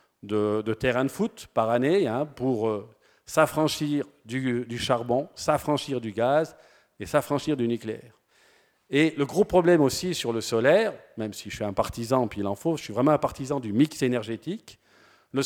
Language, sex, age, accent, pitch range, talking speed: French, male, 50-69, French, 115-145 Hz, 185 wpm